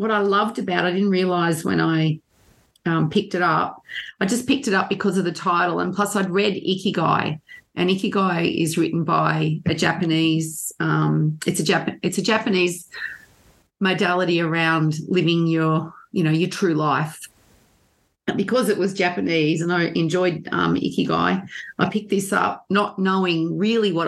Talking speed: 170 wpm